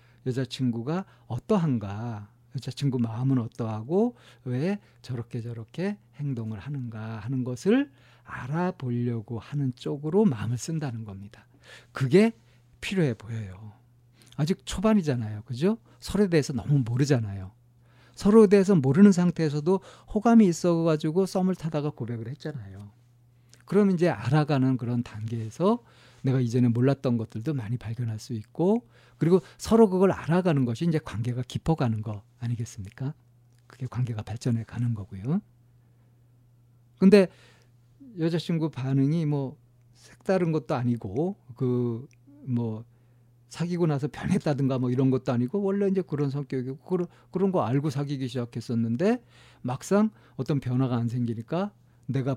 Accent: native